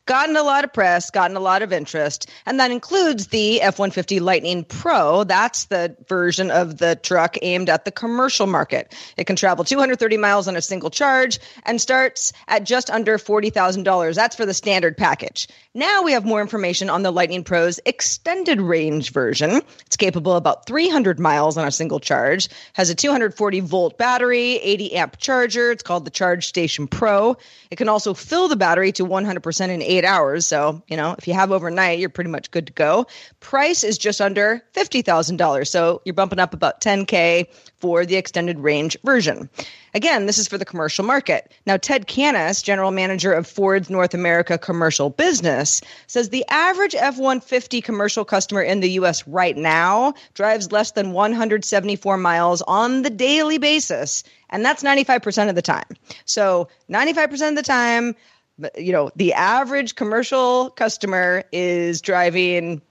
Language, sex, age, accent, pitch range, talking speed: English, female, 30-49, American, 175-240 Hz, 175 wpm